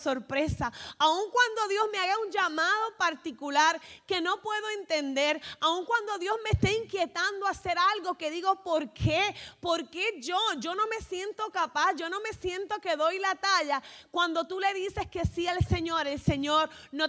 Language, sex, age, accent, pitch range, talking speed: Spanish, female, 30-49, American, 255-360 Hz, 185 wpm